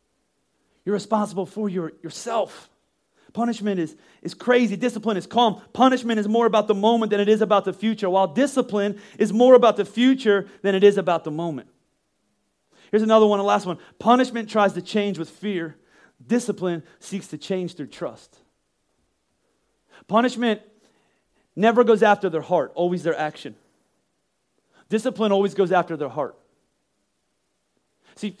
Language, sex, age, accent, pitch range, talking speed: English, male, 30-49, American, 165-210 Hz, 150 wpm